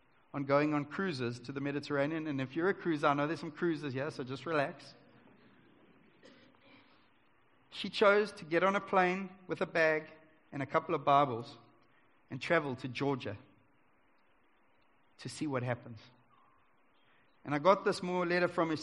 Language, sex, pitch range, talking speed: English, male, 150-195 Hz, 170 wpm